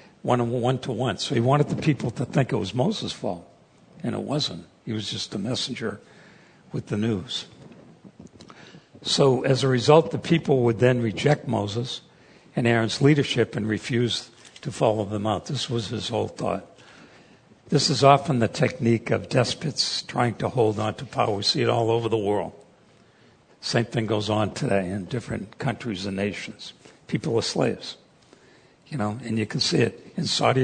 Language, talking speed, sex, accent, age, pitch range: English, 180 wpm, male, American, 60-79, 110-140 Hz